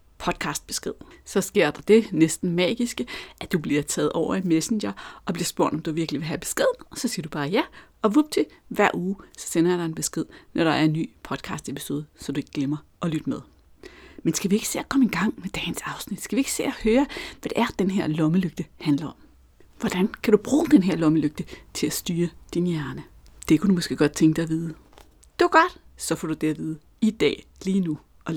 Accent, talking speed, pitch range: native, 235 wpm, 155-225 Hz